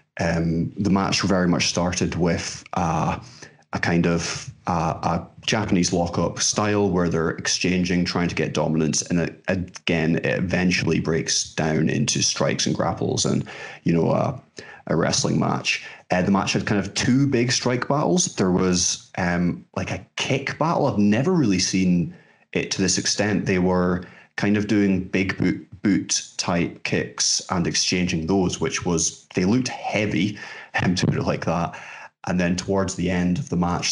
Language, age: English, 20-39